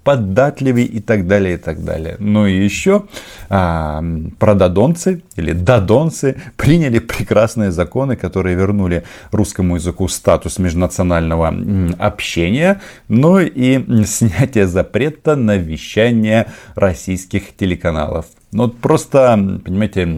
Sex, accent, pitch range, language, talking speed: male, native, 90-130 Hz, Russian, 115 wpm